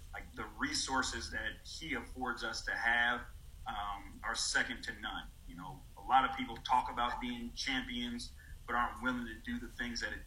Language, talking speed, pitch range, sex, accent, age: English, 195 wpm, 100-120 Hz, male, American, 40-59